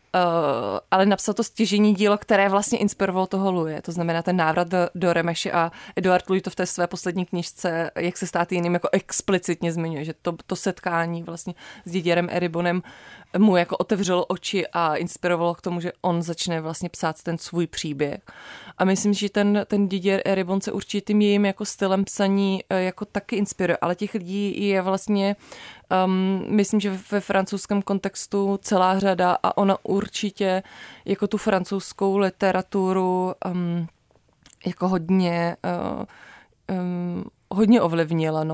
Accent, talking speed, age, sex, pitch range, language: native, 150 wpm, 20-39, female, 175-195 Hz, Czech